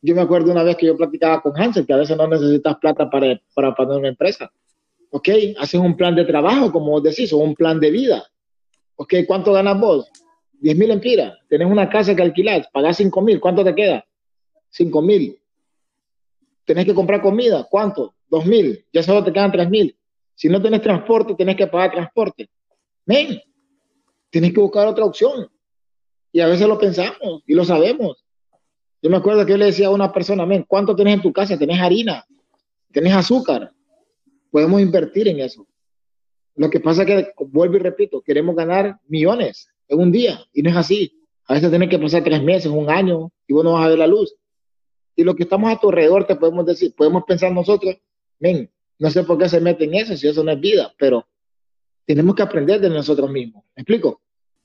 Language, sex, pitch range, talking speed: Spanish, male, 160-210 Hz, 200 wpm